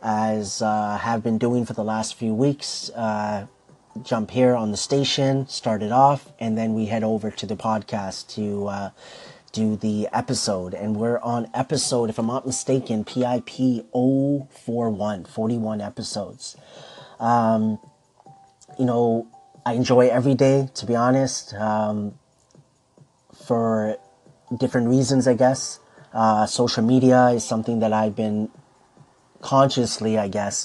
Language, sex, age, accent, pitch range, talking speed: English, male, 30-49, American, 105-125 Hz, 140 wpm